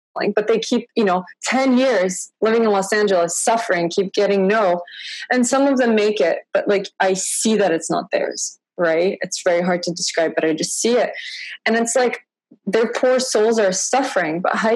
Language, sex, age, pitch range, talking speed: English, female, 20-39, 180-245 Hz, 205 wpm